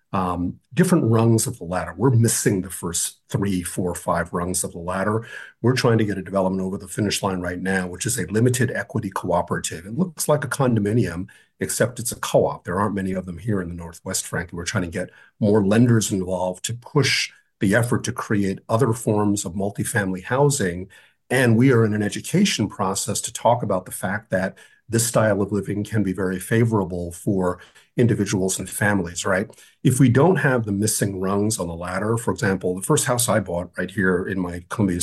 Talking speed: 205 wpm